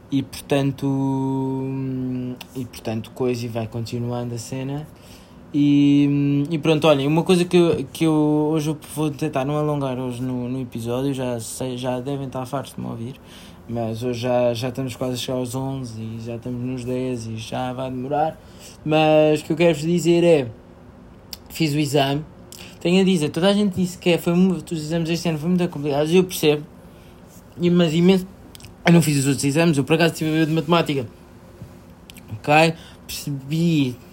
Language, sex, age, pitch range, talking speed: Portuguese, male, 20-39, 125-160 Hz, 185 wpm